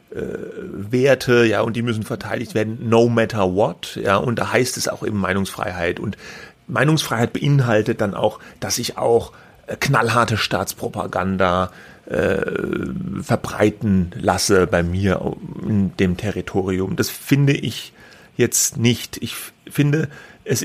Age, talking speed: 30-49, 130 wpm